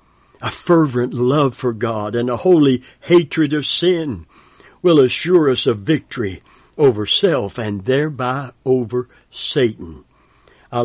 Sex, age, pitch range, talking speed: male, 60-79, 115-150 Hz, 125 wpm